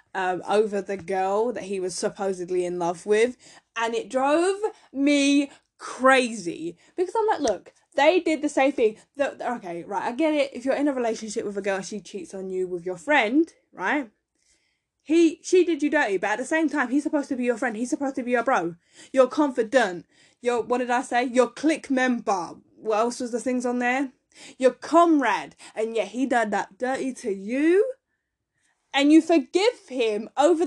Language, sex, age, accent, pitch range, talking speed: English, female, 10-29, British, 200-295 Hz, 195 wpm